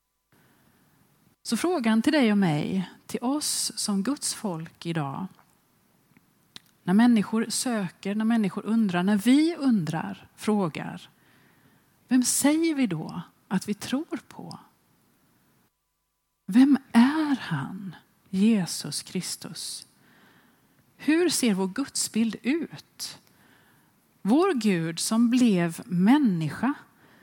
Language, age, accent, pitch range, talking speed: Swedish, 30-49, native, 190-260 Hz, 100 wpm